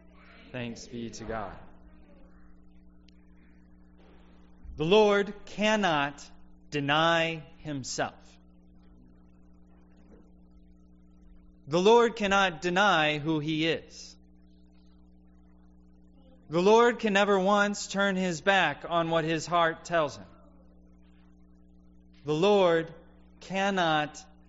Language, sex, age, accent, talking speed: English, male, 30-49, American, 80 wpm